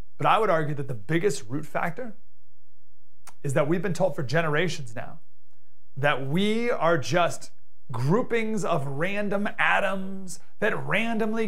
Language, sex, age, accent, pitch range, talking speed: English, male, 30-49, American, 160-220 Hz, 140 wpm